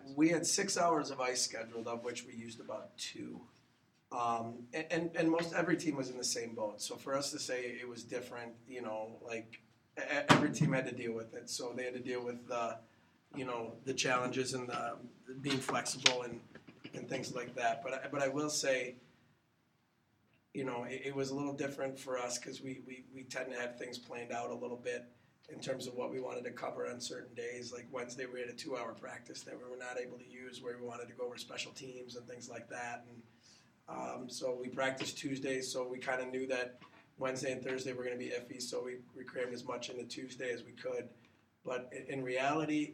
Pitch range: 120-130 Hz